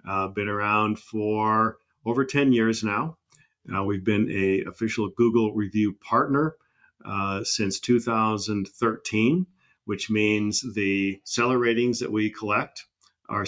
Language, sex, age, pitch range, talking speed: English, male, 50-69, 95-115 Hz, 130 wpm